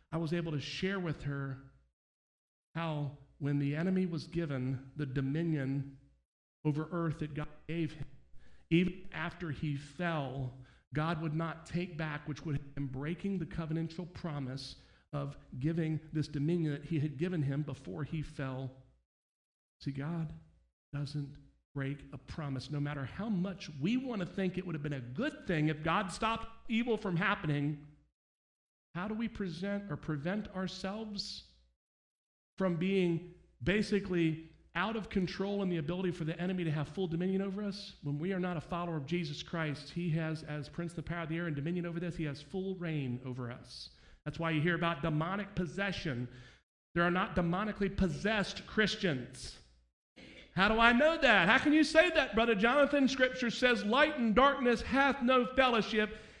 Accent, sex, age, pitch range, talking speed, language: American, male, 50-69, 145-195 Hz, 175 wpm, English